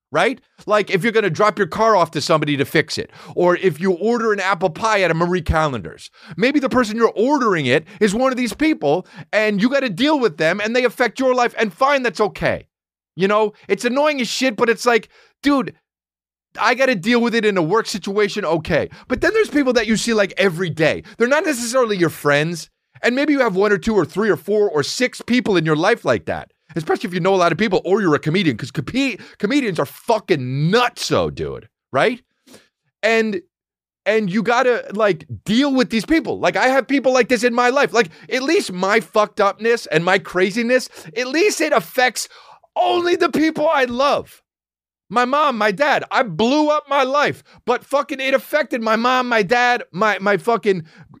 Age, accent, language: 30-49, American, English